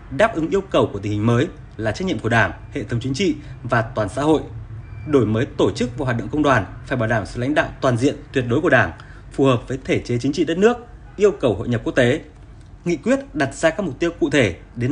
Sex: male